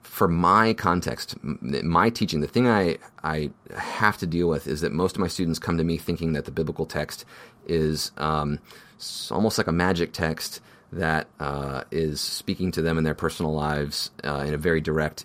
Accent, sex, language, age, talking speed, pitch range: American, male, English, 30-49, 195 wpm, 75-90 Hz